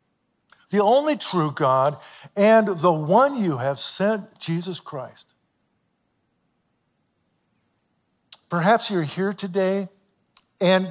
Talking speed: 95 wpm